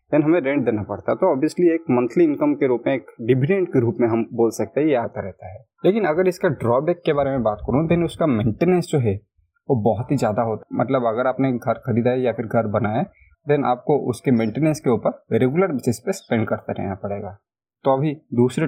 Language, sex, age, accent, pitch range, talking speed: Hindi, male, 20-39, native, 115-145 Hz, 240 wpm